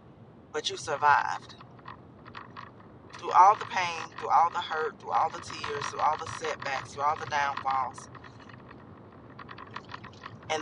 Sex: female